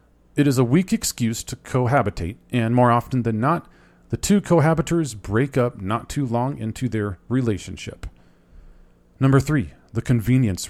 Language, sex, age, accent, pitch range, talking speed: English, male, 40-59, American, 100-135 Hz, 150 wpm